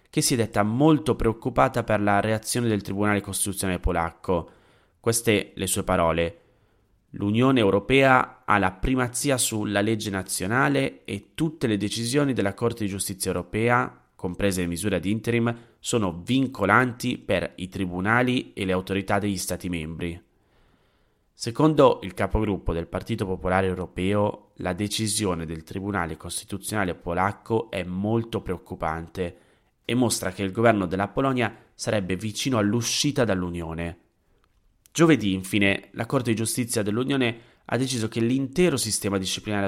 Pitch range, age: 95-120 Hz, 20-39